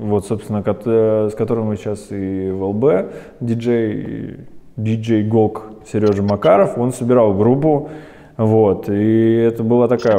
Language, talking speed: Russian, 125 wpm